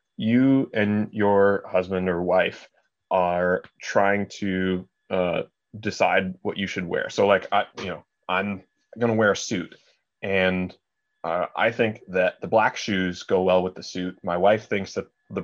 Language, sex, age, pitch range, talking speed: English, male, 20-39, 95-115 Hz, 165 wpm